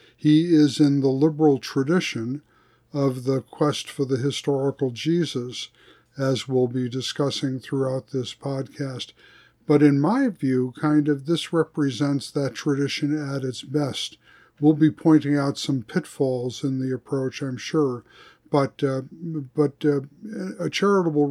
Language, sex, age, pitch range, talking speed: English, male, 50-69, 130-150 Hz, 140 wpm